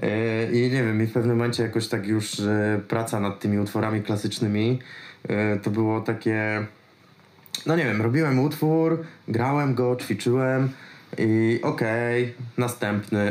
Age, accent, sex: 20-39, native, male